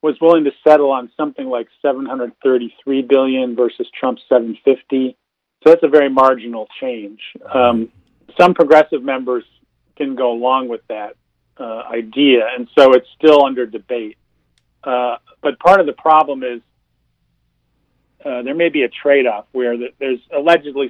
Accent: American